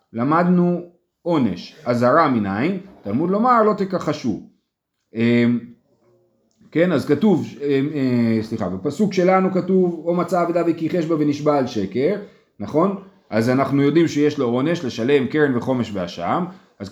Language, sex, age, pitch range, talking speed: Hebrew, male, 30-49, 130-195 Hz, 135 wpm